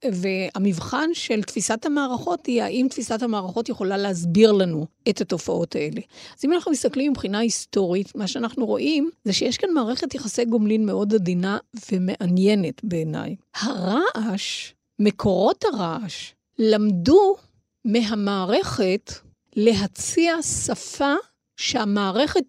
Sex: female